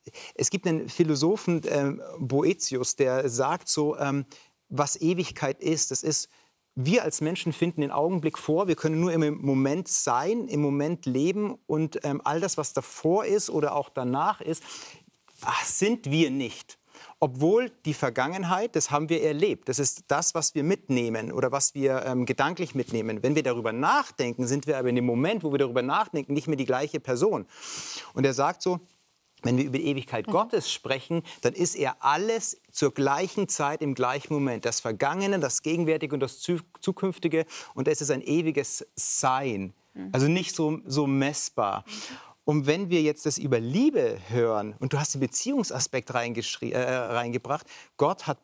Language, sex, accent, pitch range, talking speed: German, male, German, 135-170 Hz, 175 wpm